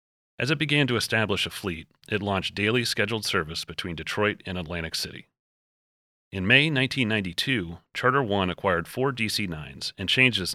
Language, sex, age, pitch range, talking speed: English, male, 30-49, 90-115 Hz, 160 wpm